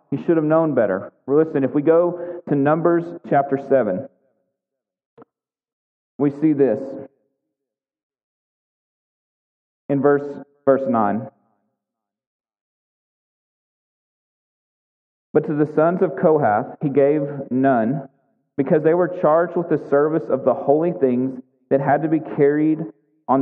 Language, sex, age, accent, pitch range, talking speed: English, male, 30-49, American, 135-155 Hz, 120 wpm